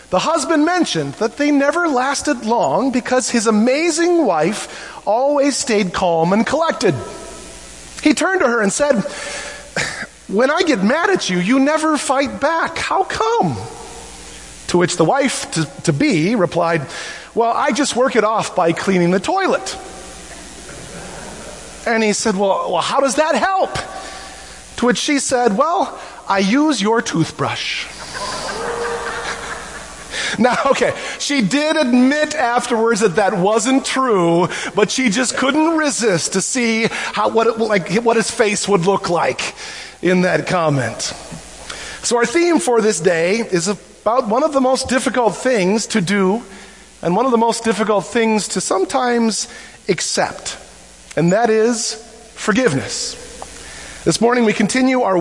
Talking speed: 145 wpm